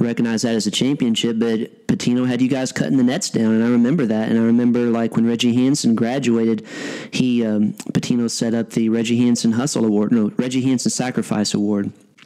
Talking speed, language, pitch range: 200 wpm, English, 115-130 Hz